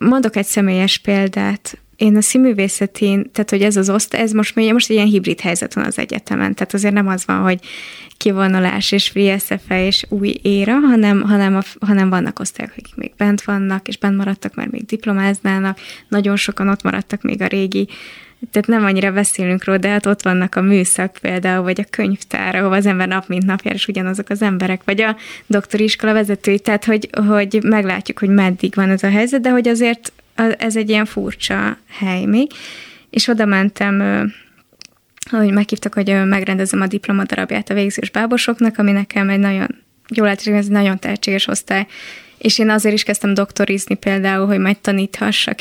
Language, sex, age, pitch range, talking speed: Hungarian, female, 20-39, 195-220 Hz, 185 wpm